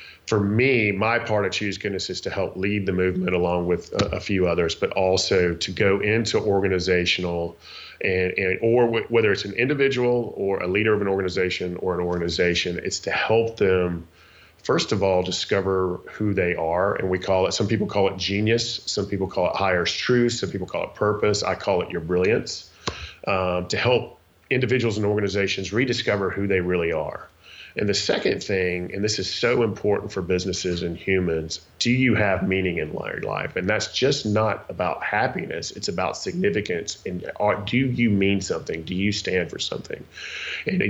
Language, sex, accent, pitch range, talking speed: English, male, American, 90-105 Hz, 190 wpm